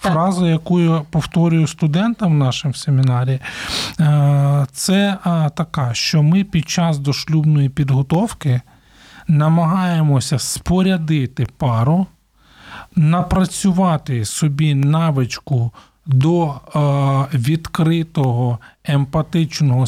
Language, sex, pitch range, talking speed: Ukrainian, male, 135-170 Hz, 75 wpm